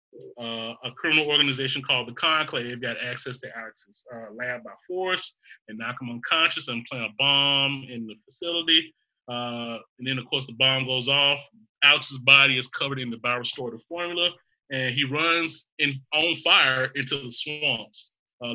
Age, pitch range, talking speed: 30-49, 120-145 Hz, 175 wpm